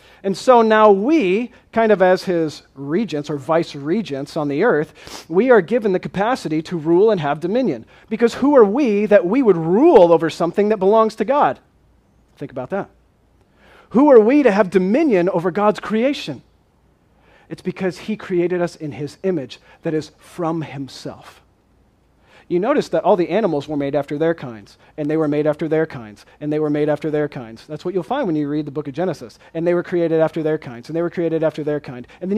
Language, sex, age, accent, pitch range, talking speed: English, male, 40-59, American, 155-215 Hz, 210 wpm